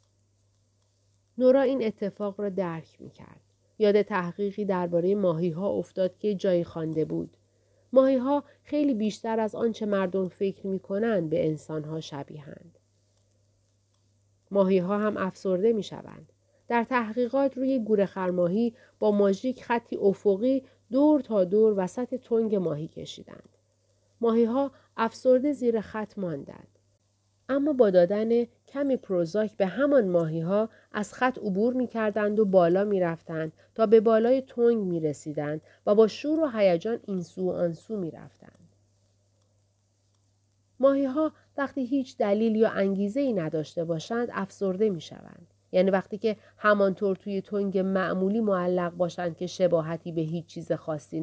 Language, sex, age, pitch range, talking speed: Persian, female, 40-59, 160-225 Hz, 135 wpm